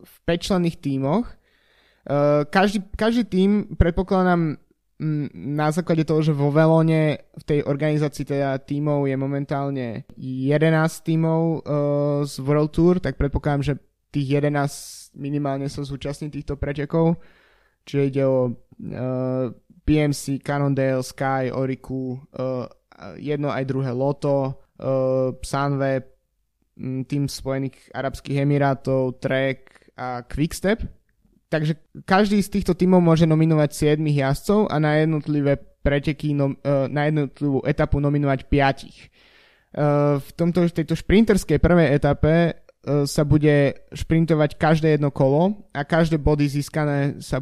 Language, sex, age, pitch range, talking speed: Slovak, male, 20-39, 135-160 Hz, 115 wpm